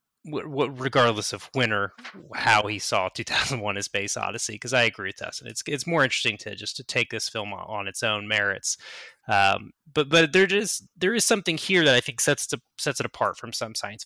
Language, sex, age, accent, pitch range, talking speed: English, male, 20-39, American, 105-140 Hz, 225 wpm